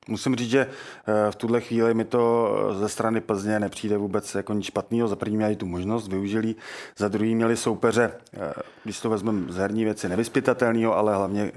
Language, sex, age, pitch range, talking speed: Czech, male, 30-49, 100-115 Hz, 175 wpm